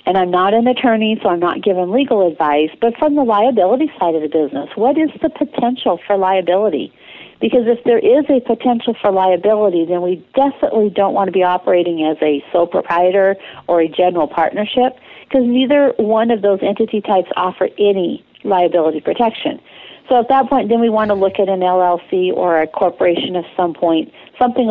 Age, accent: 50-69, American